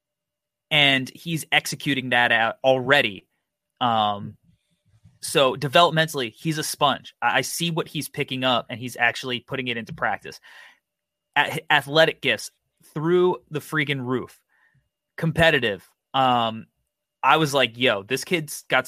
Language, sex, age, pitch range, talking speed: English, male, 20-39, 120-145 Hz, 135 wpm